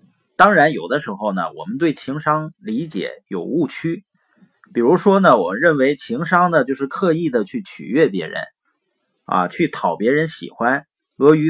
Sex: male